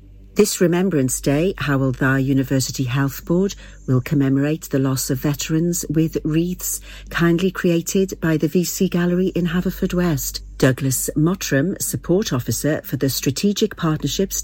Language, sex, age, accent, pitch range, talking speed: English, female, 50-69, British, 130-175 Hz, 135 wpm